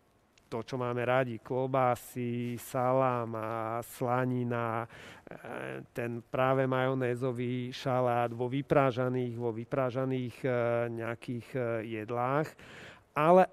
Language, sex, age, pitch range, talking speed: Slovak, male, 40-59, 120-140 Hz, 80 wpm